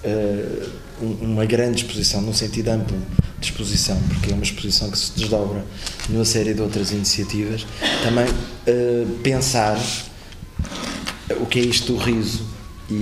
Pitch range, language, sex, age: 100-115 Hz, Portuguese, male, 20-39